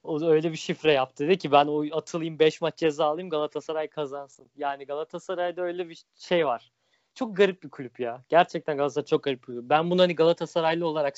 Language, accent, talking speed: Turkish, native, 200 wpm